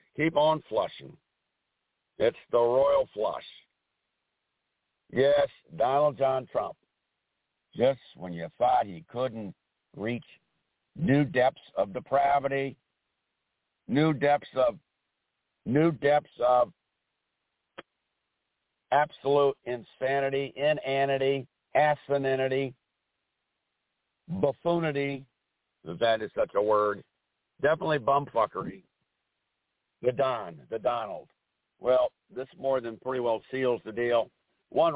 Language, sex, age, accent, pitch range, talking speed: English, male, 60-79, American, 115-140 Hz, 95 wpm